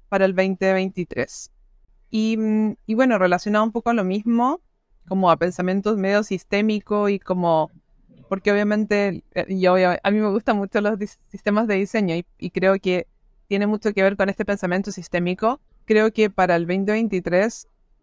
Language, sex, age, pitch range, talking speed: Spanish, female, 20-39, 195-235 Hz, 165 wpm